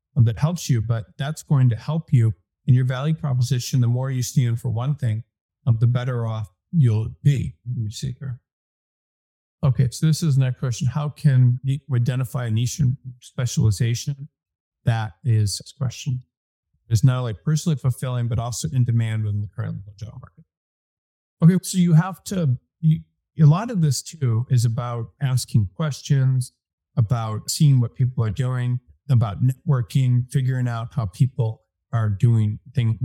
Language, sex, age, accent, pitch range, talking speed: English, male, 50-69, American, 110-135 Hz, 165 wpm